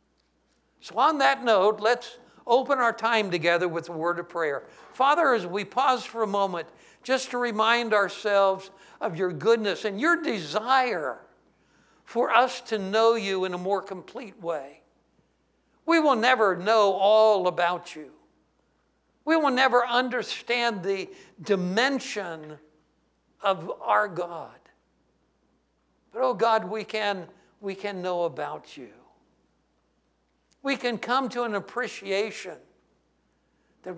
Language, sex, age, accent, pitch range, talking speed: English, male, 60-79, American, 175-240 Hz, 130 wpm